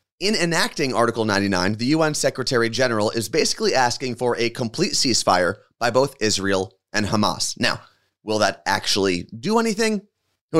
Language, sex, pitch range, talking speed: English, male, 105-140 Hz, 155 wpm